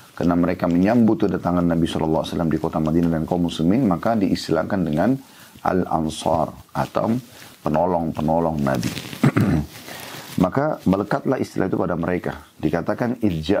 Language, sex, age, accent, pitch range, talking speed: Indonesian, male, 40-59, native, 80-100 Hz, 115 wpm